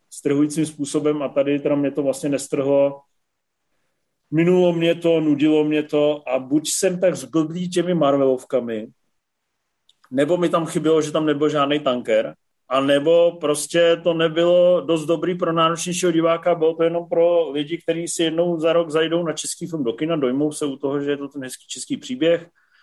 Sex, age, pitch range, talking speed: male, 40-59, 140-160 Hz, 180 wpm